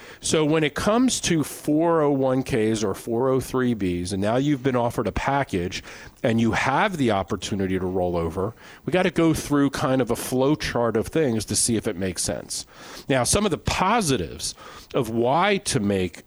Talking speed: 185 wpm